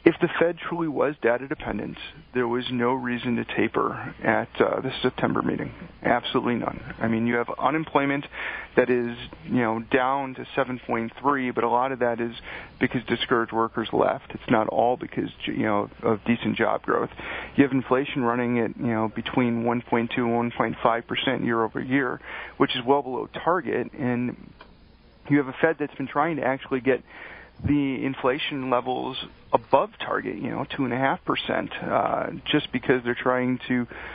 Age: 40-59